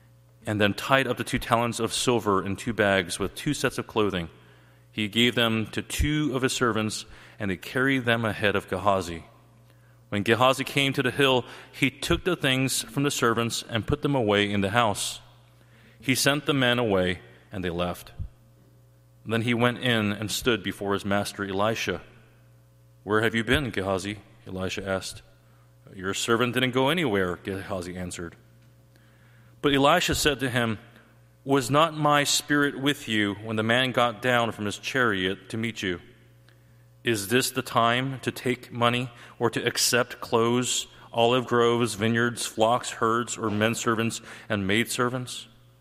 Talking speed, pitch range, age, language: 170 wpm, 90-120 Hz, 30-49, English